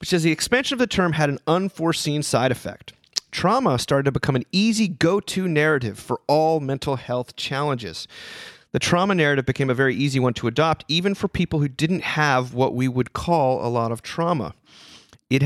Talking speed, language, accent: 195 wpm, English, American